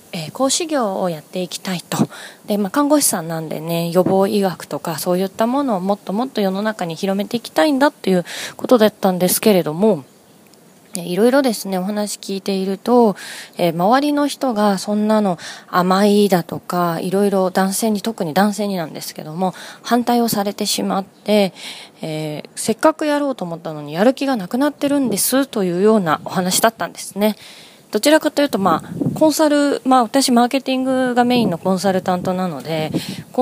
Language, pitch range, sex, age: Japanese, 180-245 Hz, female, 20-39